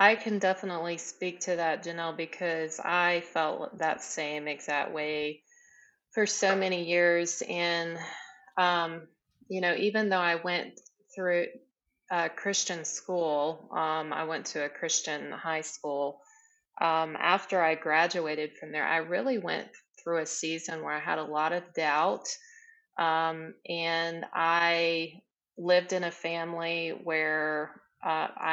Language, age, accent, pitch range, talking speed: English, 30-49, American, 155-180 Hz, 140 wpm